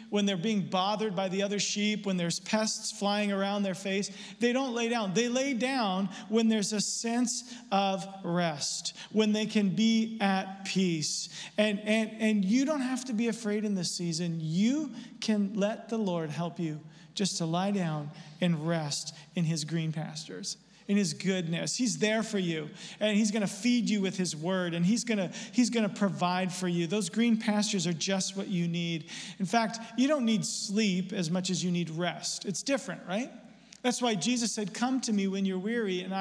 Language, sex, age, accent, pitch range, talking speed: English, male, 40-59, American, 185-230 Hz, 200 wpm